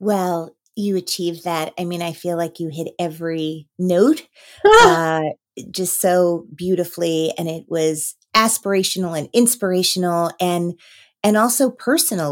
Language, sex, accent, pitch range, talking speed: English, female, American, 175-215 Hz, 130 wpm